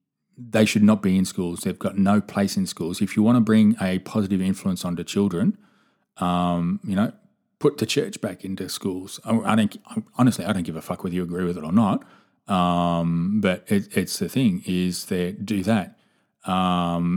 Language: English